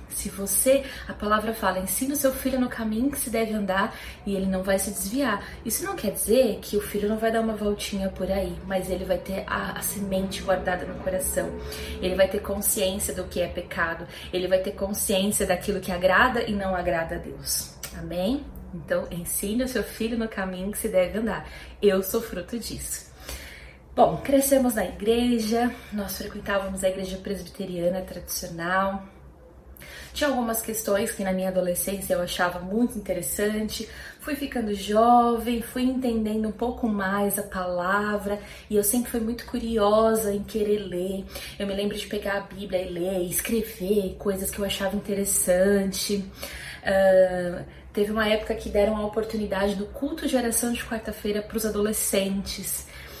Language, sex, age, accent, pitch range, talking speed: Portuguese, female, 20-39, Brazilian, 185-225 Hz, 170 wpm